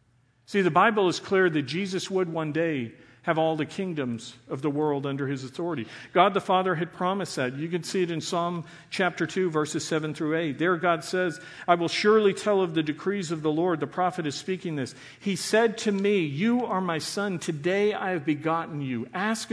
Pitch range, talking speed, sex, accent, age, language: 140-185 Hz, 215 wpm, male, American, 50-69, English